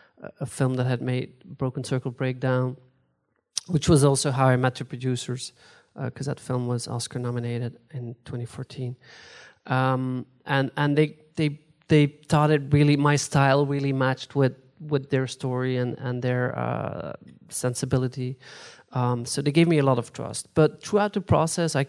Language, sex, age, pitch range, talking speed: English, male, 30-49, 125-145 Hz, 165 wpm